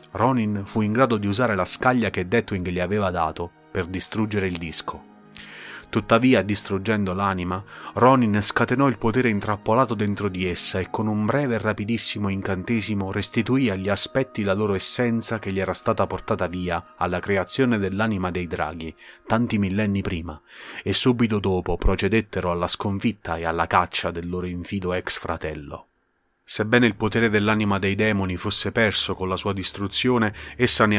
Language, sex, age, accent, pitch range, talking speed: Italian, male, 30-49, native, 90-110 Hz, 160 wpm